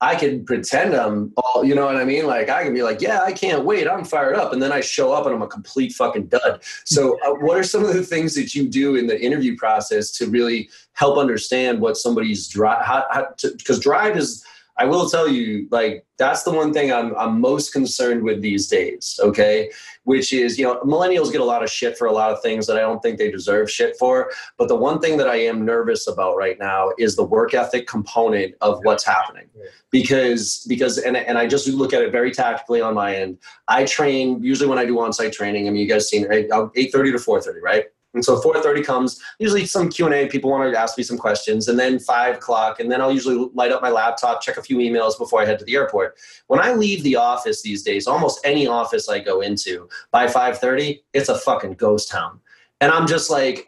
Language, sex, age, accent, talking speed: English, male, 20-39, American, 240 wpm